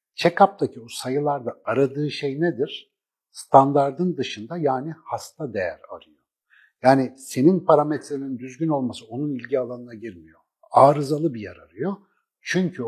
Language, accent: Turkish, native